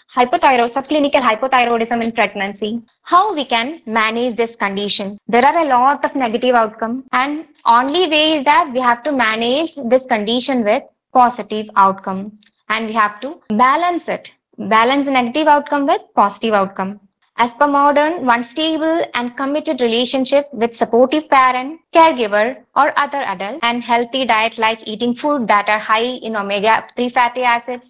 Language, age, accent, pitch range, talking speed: English, 20-39, Indian, 220-285 Hz, 155 wpm